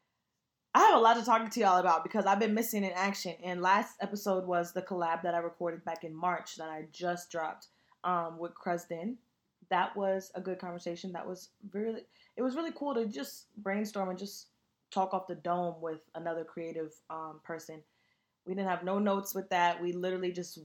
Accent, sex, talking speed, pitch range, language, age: American, female, 205 wpm, 170-205 Hz, English, 20-39